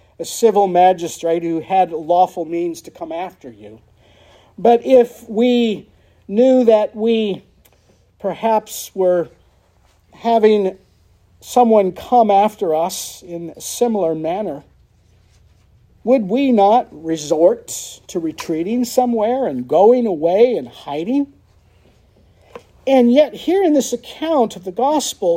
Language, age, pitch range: English, 50-69, 155-240 Hz